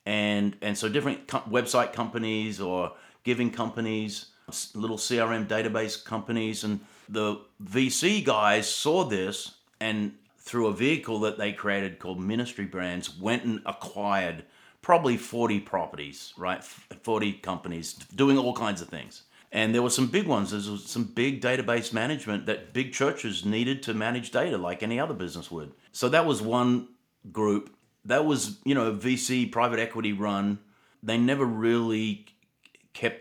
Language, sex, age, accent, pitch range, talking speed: English, male, 40-59, Australian, 100-120 Hz, 155 wpm